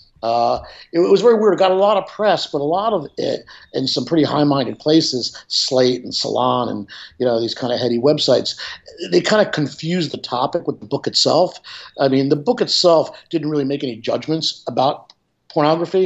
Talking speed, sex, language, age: 200 wpm, male, English, 50-69